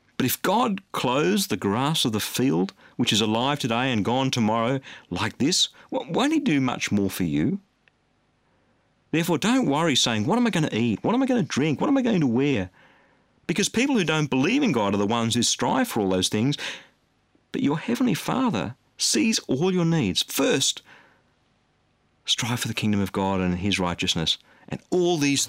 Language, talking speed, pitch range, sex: English, 200 wpm, 105-165 Hz, male